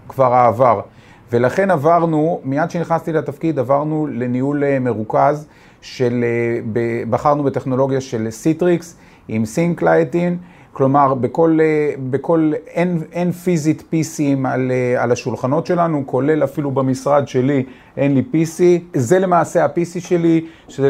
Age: 40-59